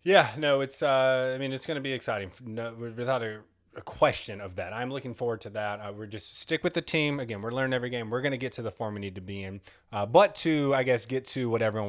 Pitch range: 110-135 Hz